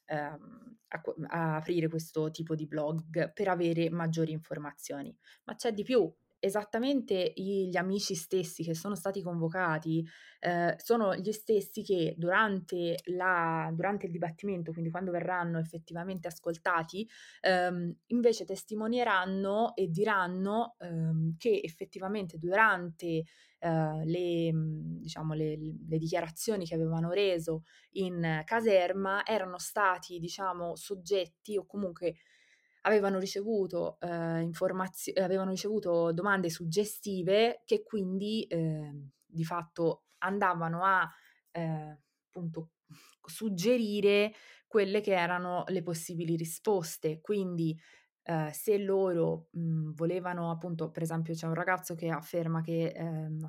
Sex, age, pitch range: female, 20-39, 165-195 Hz